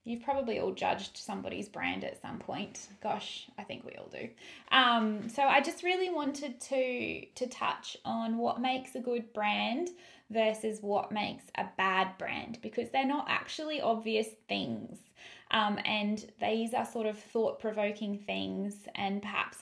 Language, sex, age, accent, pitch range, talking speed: English, female, 20-39, Australian, 195-240 Hz, 160 wpm